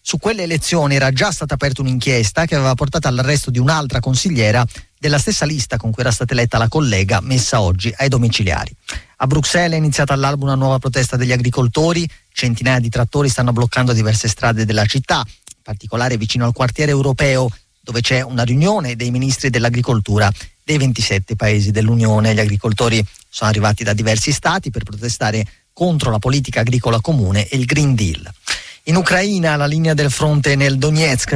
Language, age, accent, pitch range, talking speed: Italian, 40-59, native, 115-135 Hz, 175 wpm